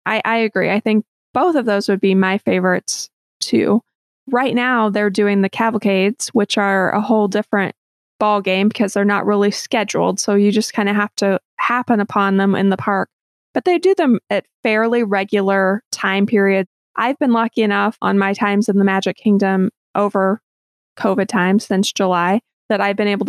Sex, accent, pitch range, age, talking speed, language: female, American, 195-220 Hz, 20-39, 185 wpm, English